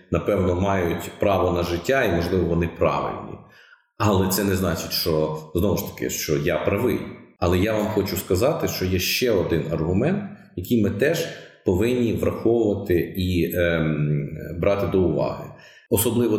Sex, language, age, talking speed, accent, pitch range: male, Ukrainian, 50-69, 150 wpm, native, 85-105 Hz